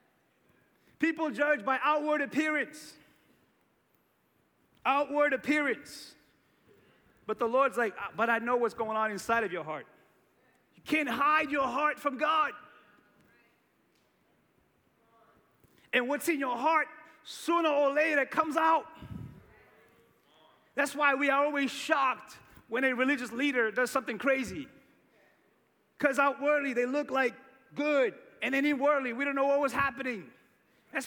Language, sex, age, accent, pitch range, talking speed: English, male, 30-49, American, 235-290 Hz, 125 wpm